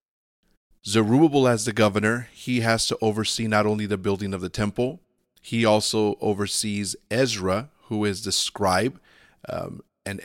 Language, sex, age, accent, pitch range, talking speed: English, male, 30-49, American, 100-115 Hz, 145 wpm